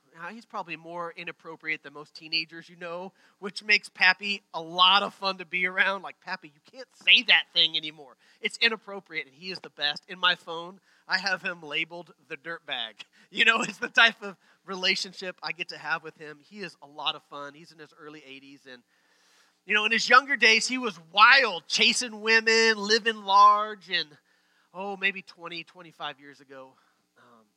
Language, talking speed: English, 195 wpm